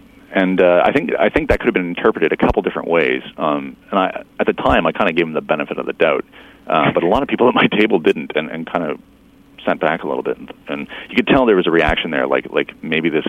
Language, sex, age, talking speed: English, male, 40-59, 285 wpm